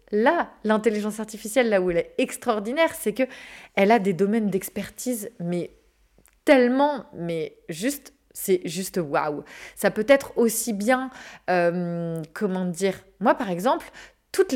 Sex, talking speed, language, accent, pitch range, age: female, 140 wpm, French, French, 210-275 Hz, 20-39